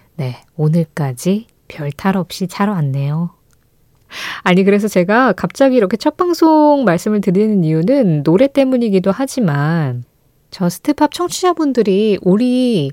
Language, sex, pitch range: Korean, female, 160-230 Hz